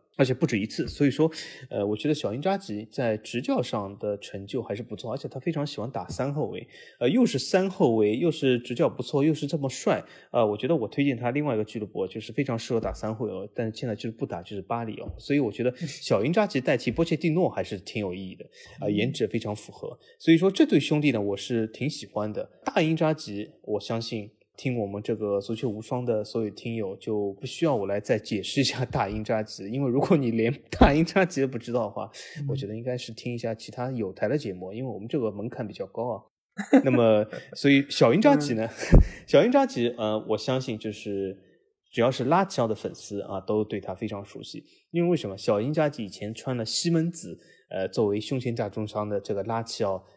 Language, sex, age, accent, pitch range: Chinese, male, 20-39, native, 105-140 Hz